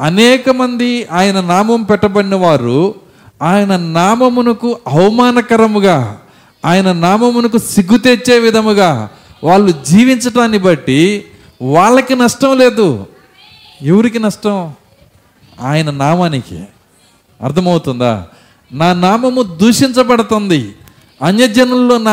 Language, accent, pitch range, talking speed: Telugu, native, 160-230 Hz, 75 wpm